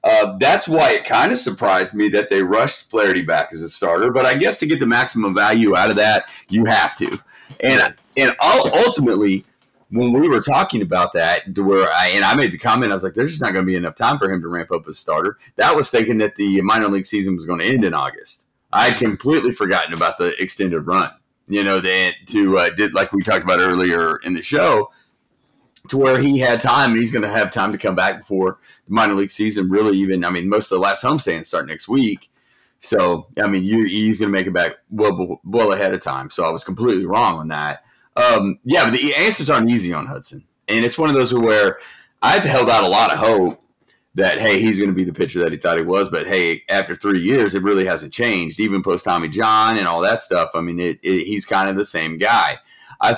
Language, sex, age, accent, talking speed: English, male, 40-59, American, 245 wpm